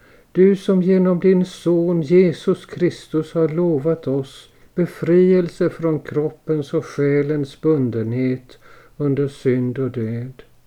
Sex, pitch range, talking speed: male, 130-175 Hz, 110 wpm